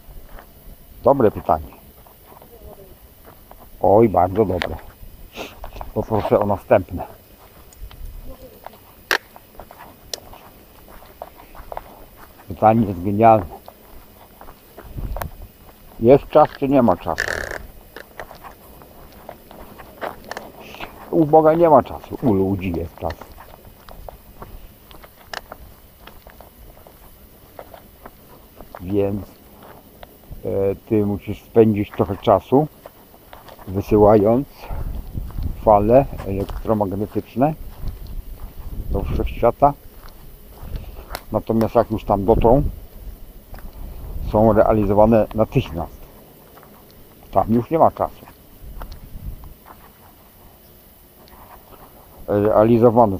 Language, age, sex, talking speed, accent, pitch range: English, 60-79, male, 60 wpm, Polish, 95-115 Hz